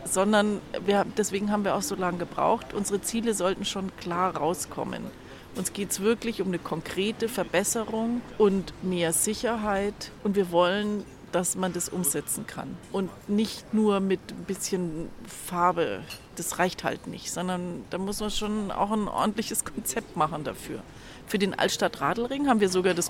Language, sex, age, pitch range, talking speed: German, female, 40-59, 180-230 Hz, 165 wpm